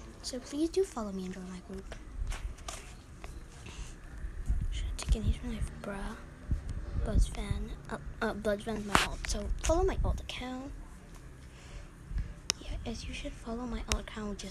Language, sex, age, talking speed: English, female, 20-39, 155 wpm